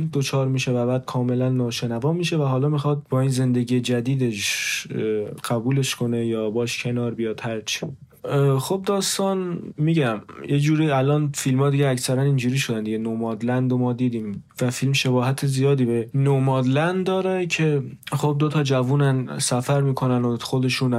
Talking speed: 150 wpm